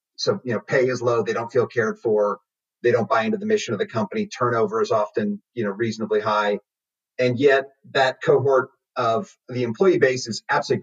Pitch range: 110-135 Hz